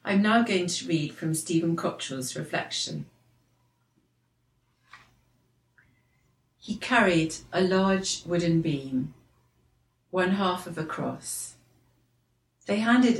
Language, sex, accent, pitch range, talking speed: English, female, British, 145-200 Hz, 100 wpm